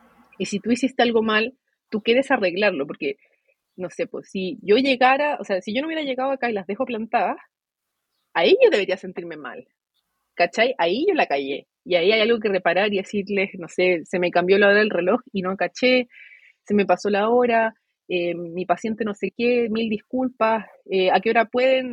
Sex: female